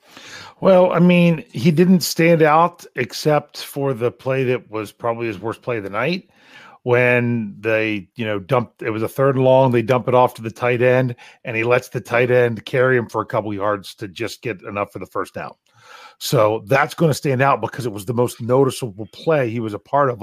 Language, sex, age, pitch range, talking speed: English, male, 40-59, 120-140 Hz, 225 wpm